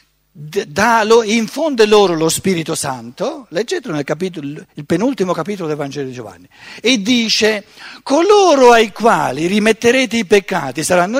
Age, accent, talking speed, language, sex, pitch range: 60-79, native, 135 wpm, Italian, male, 140-215 Hz